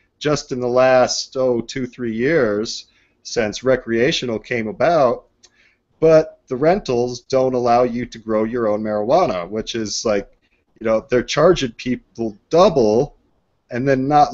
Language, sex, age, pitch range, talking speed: English, male, 30-49, 115-140 Hz, 145 wpm